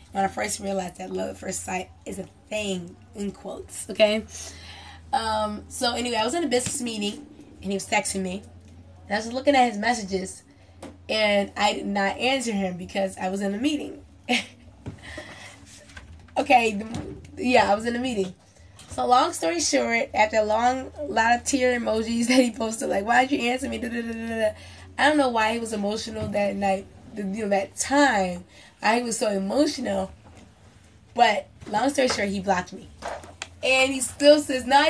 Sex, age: female, 10-29